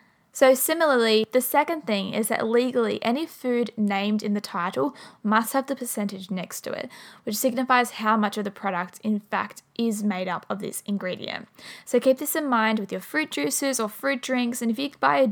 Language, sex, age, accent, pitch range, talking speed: English, female, 10-29, Australian, 200-235 Hz, 210 wpm